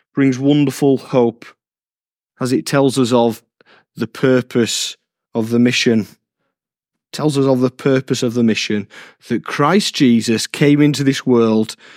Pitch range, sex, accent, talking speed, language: 115-135 Hz, male, British, 140 wpm, English